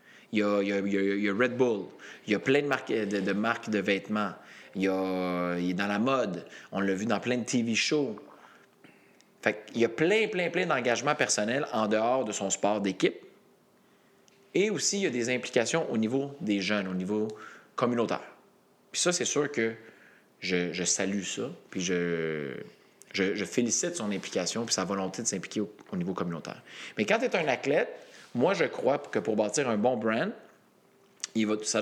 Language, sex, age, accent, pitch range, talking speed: French, male, 30-49, Canadian, 100-140 Hz, 185 wpm